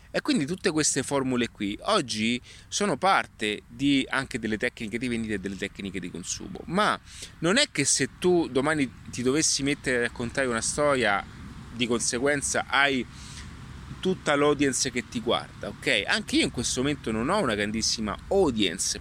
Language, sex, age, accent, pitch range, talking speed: Italian, male, 30-49, native, 105-145 Hz, 165 wpm